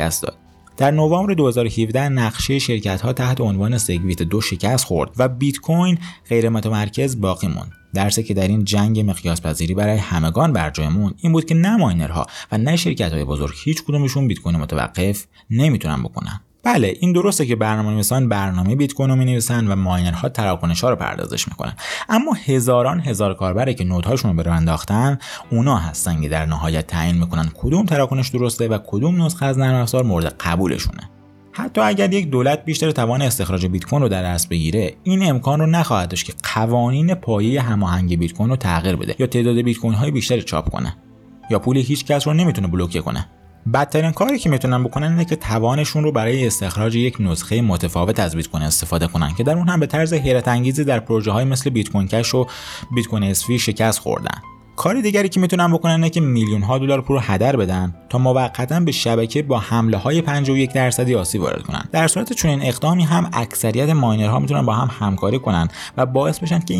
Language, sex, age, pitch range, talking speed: Persian, male, 30-49, 95-140 Hz, 185 wpm